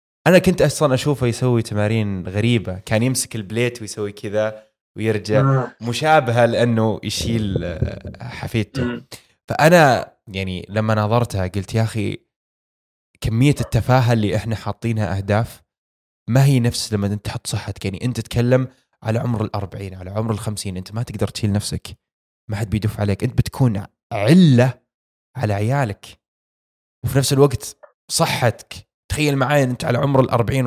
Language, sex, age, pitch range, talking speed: Arabic, male, 20-39, 110-130 Hz, 135 wpm